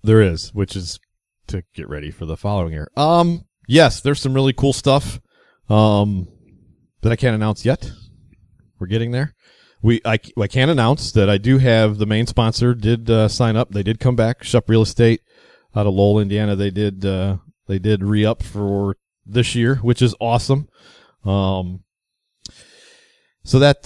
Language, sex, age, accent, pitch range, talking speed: English, male, 30-49, American, 95-120 Hz, 175 wpm